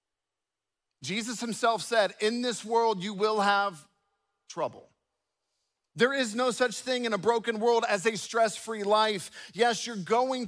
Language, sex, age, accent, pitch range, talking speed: English, male, 40-59, American, 190-235 Hz, 150 wpm